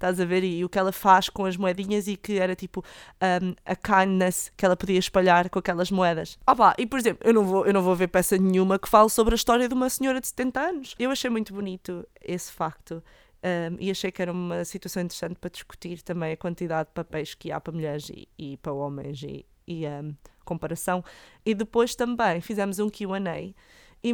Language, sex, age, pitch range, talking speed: Portuguese, female, 20-39, 175-210 Hz, 225 wpm